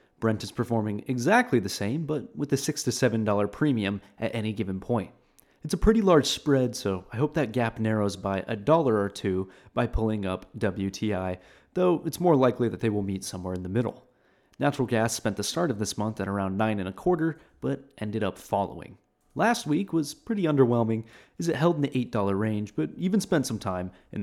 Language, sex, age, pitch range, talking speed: English, male, 30-49, 100-145 Hz, 210 wpm